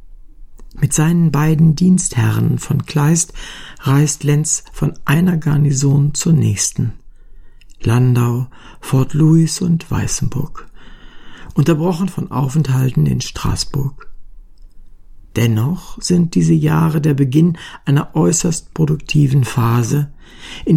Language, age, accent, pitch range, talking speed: German, 60-79, German, 115-160 Hz, 100 wpm